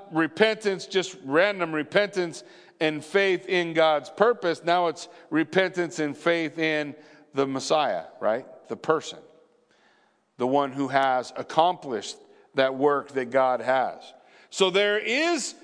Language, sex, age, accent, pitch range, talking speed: English, male, 50-69, American, 155-220 Hz, 125 wpm